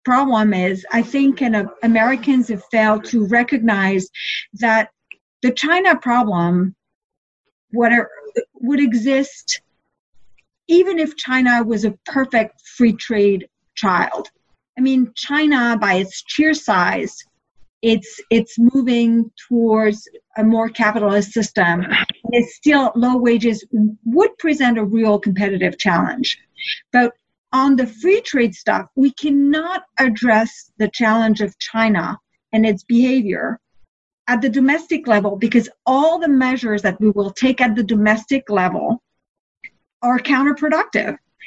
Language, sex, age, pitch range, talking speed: English, female, 50-69, 215-270 Hz, 125 wpm